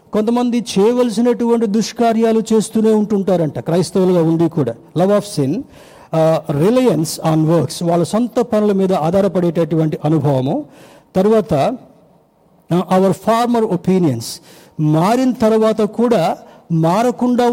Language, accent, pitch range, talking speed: Telugu, native, 160-210 Hz, 95 wpm